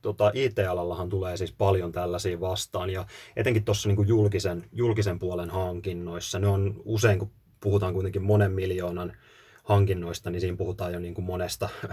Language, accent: Finnish, native